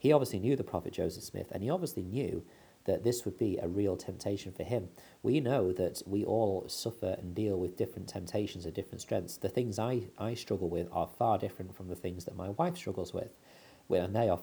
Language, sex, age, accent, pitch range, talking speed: English, male, 40-59, British, 90-110 Hz, 225 wpm